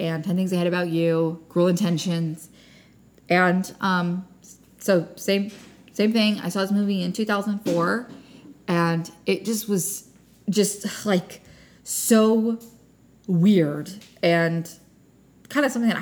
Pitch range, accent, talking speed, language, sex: 170-205 Hz, American, 125 wpm, English, female